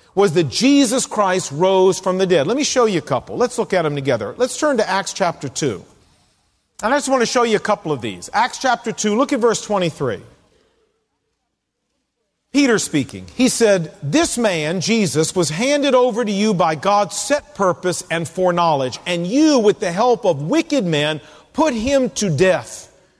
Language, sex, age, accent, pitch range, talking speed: English, male, 40-59, American, 170-250 Hz, 190 wpm